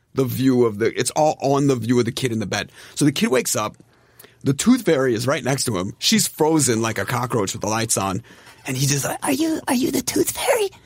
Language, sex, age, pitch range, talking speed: English, male, 30-49, 120-150 Hz, 265 wpm